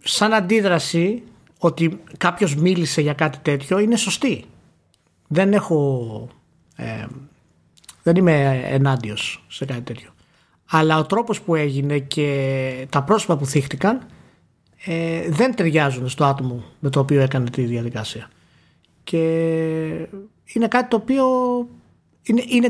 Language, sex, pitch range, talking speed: Greek, male, 140-210 Hz, 125 wpm